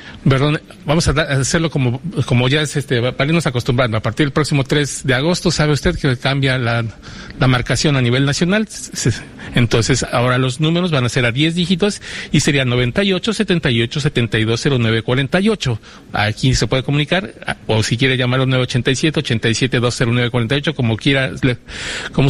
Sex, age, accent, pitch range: male, 50-69, Mexican, 125-165 Hz